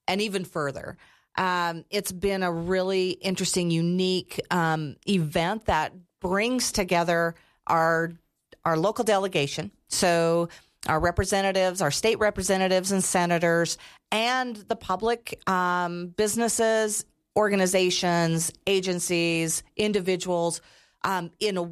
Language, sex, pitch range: English, female, 165-195 Hz